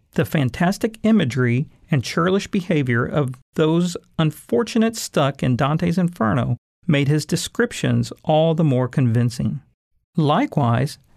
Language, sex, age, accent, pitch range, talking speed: English, male, 50-69, American, 125-175 Hz, 115 wpm